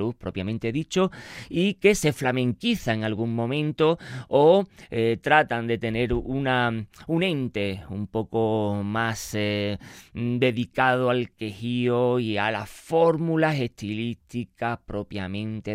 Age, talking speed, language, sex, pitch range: 20-39, 115 wpm, Spanish, male, 100-125 Hz